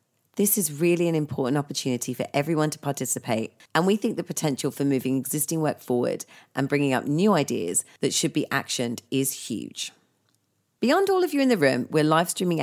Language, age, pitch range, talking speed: English, 40-59, 130-170 Hz, 195 wpm